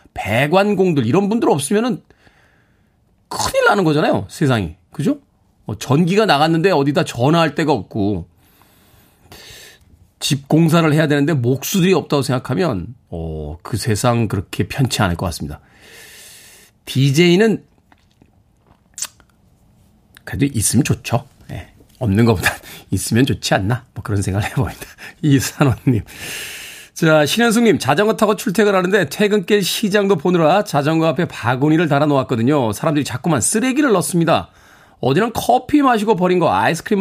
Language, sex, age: Korean, male, 40-59